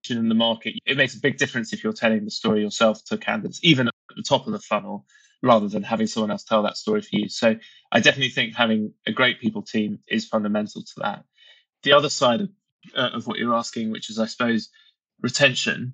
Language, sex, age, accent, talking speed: English, male, 20-39, British, 225 wpm